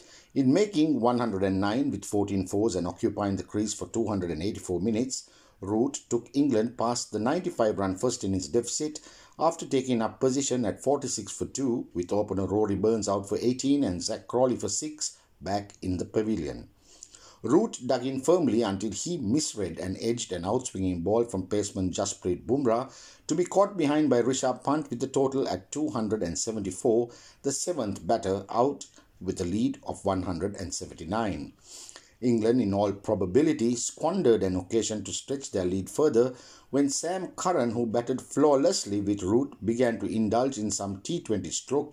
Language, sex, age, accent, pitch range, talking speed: English, male, 60-79, Indian, 95-130 Hz, 160 wpm